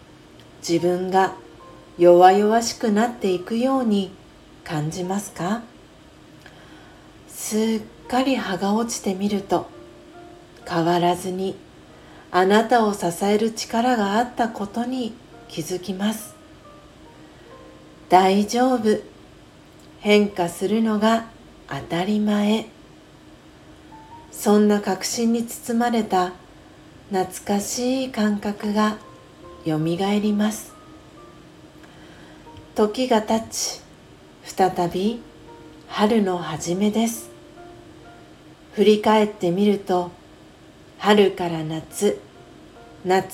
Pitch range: 180-220 Hz